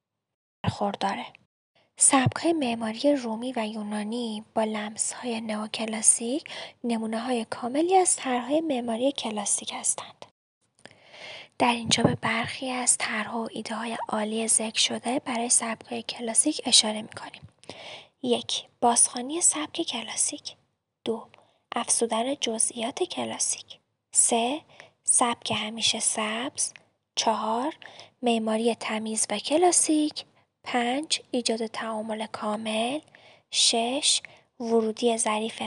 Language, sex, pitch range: Persian, female, 220-270 Hz